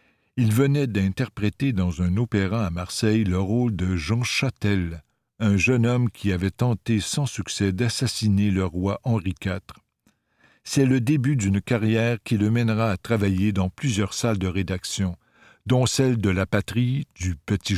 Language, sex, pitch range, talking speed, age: French, male, 95-120 Hz, 160 wpm, 60-79